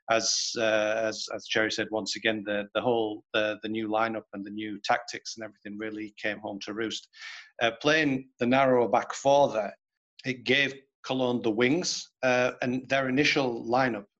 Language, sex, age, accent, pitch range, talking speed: English, male, 40-59, British, 115-135 Hz, 180 wpm